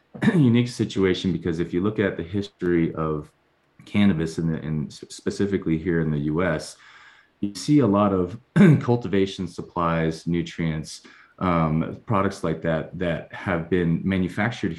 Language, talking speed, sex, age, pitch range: English, 140 wpm, male, 30-49, 80-95 Hz